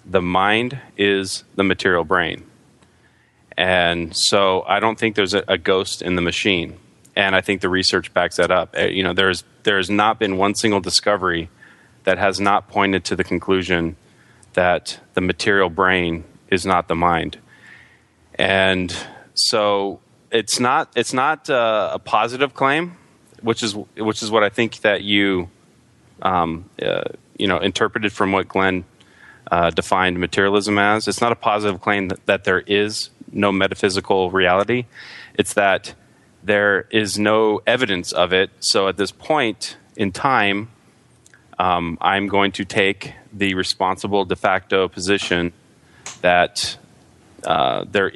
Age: 30-49